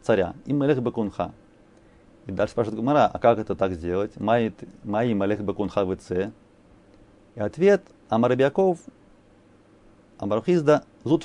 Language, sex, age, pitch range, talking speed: Russian, male, 30-49, 105-140 Hz, 85 wpm